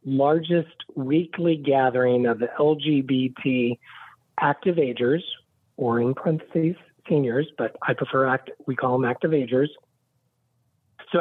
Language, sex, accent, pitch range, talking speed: English, male, American, 130-160 Hz, 120 wpm